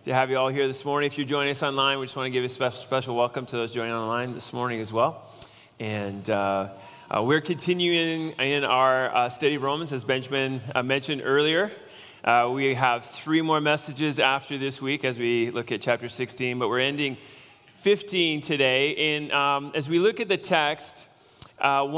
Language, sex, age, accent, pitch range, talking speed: English, male, 30-49, American, 125-145 Hz, 200 wpm